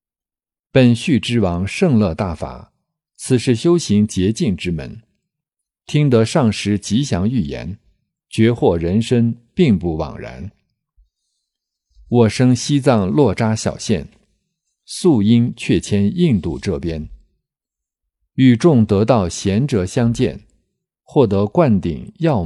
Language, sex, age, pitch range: Chinese, male, 50-69, 95-135 Hz